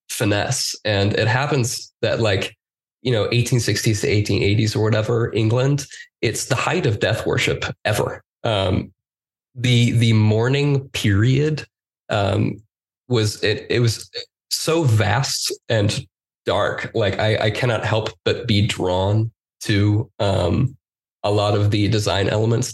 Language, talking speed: English, 135 wpm